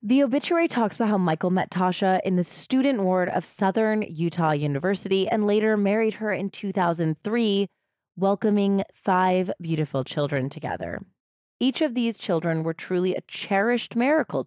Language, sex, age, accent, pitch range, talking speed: English, female, 20-39, American, 170-230 Hz, 150 wpm